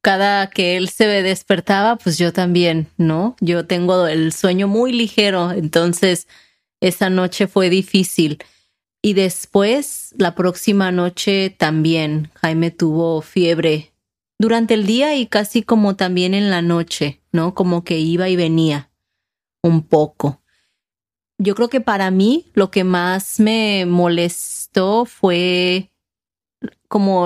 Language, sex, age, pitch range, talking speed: English, female, 30-49, 170-195 Hz, 130 wpm